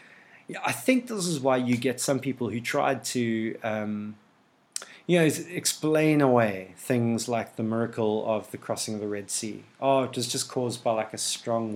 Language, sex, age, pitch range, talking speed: English, male, 30-49, 110-135 Hz, 190 wpm